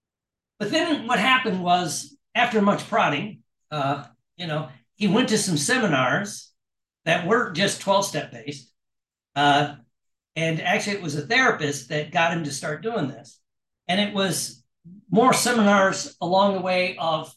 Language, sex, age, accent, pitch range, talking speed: English, male, 60-79, American, 145-205 Hz, 150 wpm